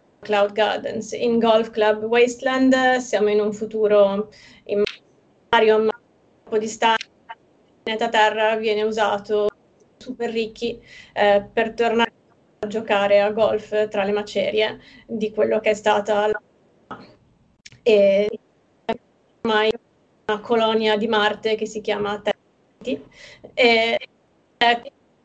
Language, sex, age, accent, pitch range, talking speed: Italian, female, 30-49, native, 210-230 Hz, 120 wpm